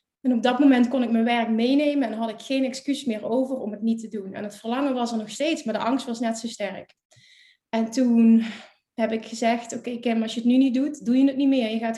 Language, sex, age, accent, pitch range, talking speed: Dutch, female, 20-39, Dutch, 225-265 Hz, 275 wpm